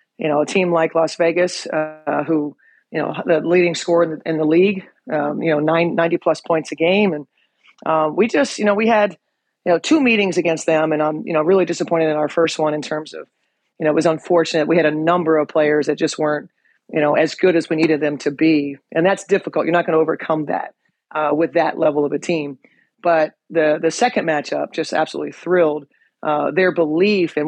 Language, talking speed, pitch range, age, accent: English, 230 wpm, 155-175 Hz, 40-59, American